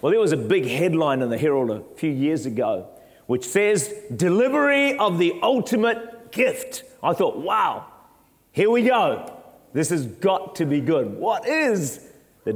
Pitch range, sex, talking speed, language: 135-180 Hz, male, 165 wpm, English